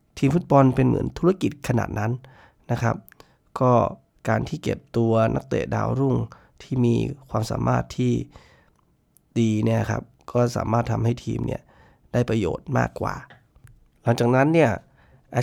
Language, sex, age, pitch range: Thai, male, 20-39, 115-135 Hz